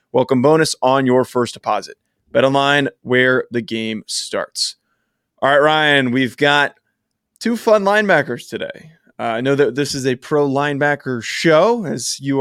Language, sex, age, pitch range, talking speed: English, male, 20-39, 125-150 Hz, 155 wpm